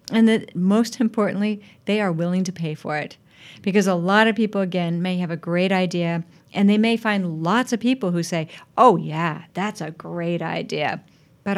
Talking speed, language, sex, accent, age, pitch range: 195 wpm, English, female, American, 50-69, 165-195 Hz